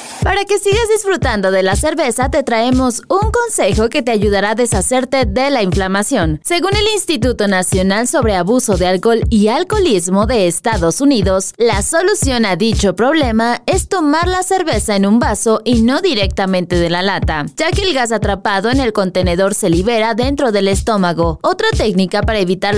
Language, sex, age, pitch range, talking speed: Spanish, female, 20-39, 190-285 Hz, 175 wpm